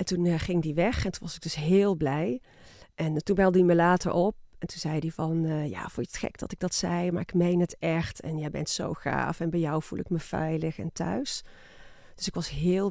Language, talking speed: Dutch, 265 wpm